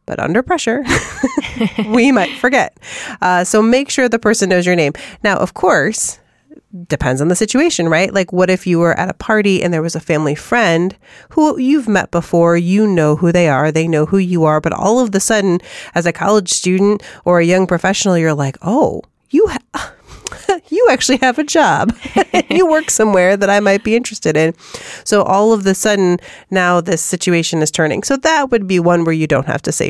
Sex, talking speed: female, 210 wpm